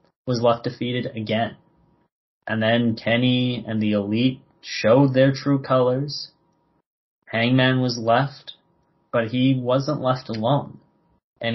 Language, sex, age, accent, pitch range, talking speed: English, male, 30-49, American, 115-140 Hz, 120 wpm